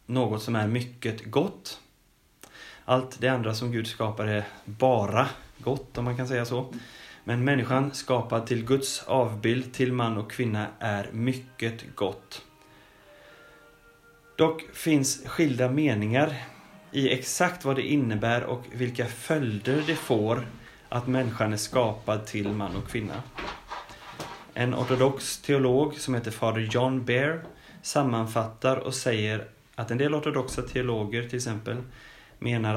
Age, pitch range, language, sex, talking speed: 30-49, 105-130 Hz, Swedish, male, 135 wpm